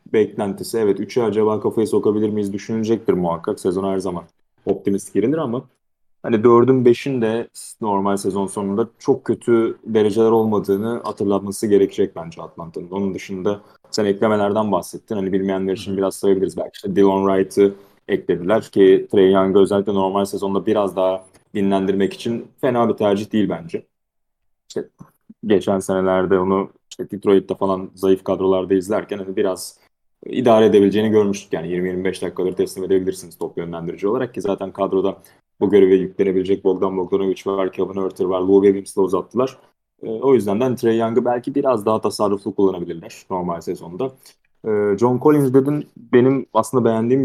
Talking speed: 150 wpm